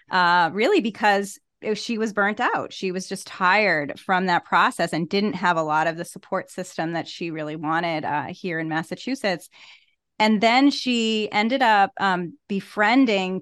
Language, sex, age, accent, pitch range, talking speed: English, female, 30-49, American, 180-210 Hz, 170 wpm